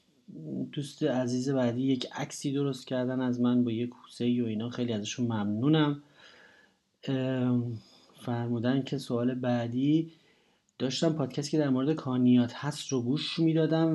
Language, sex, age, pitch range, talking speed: Persian, male, 30-49, 125-145 Hz, 140 wpm